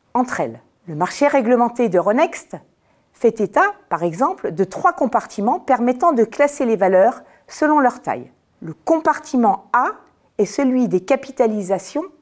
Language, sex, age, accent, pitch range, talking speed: French, female, 40-59, French, 210-270 Hz, 140 wpm